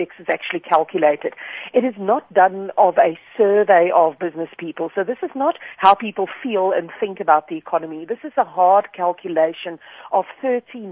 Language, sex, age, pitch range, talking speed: English, female, 40-59, 165-210 Hz, 175 wpm